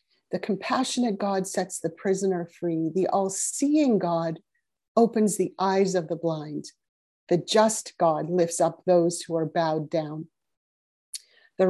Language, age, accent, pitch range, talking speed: English, 40-59, American, 175-225 Hz, 140 wpm